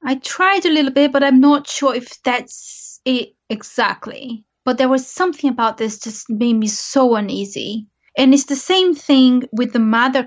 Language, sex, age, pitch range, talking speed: English, female, 20-39, 225-280 Hz, 185 wpm